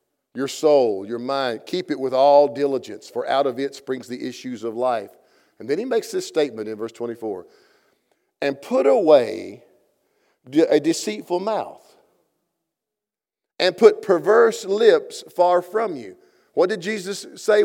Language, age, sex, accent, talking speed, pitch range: English, 50-69, male, American, 150 wpm, 170-245 Hz